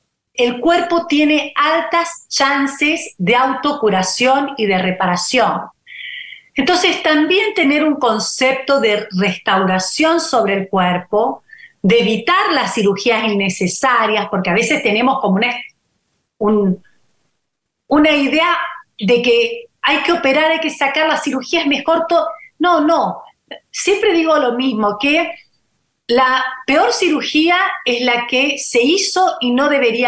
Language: Spanish